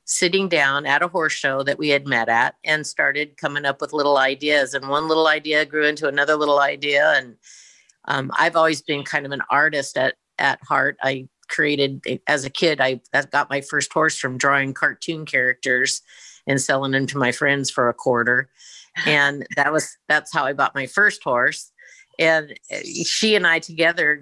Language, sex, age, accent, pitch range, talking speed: English, female, 50-69, American, 135-155 Hz, 195 wpm